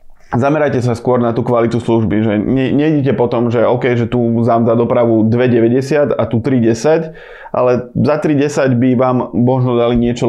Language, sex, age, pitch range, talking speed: Slovak, male, 20-39, 115-130 Hz, 170 wpm